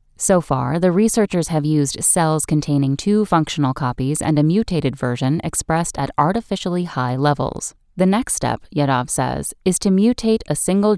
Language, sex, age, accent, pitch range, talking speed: English, female, 10-29, American, 135-185 Hz, 165 wpm